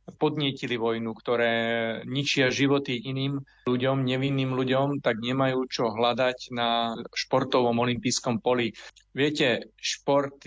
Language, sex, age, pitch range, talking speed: Slovak, male, 40-59, 120-130 Hz, 110 wpm